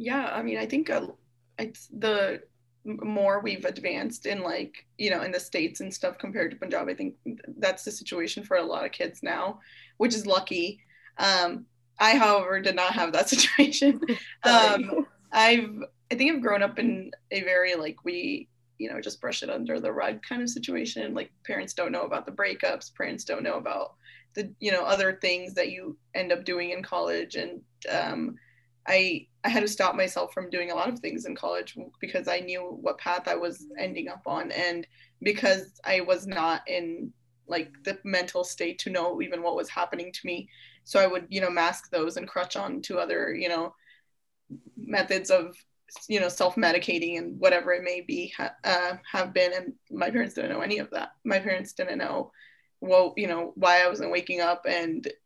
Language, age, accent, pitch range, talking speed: English, 20-39, American, 175-220 Hz, 200 wpm